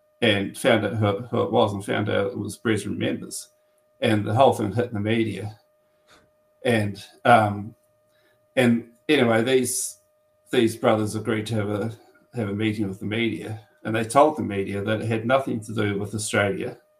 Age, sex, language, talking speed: 40-59, male, English, 180 wpm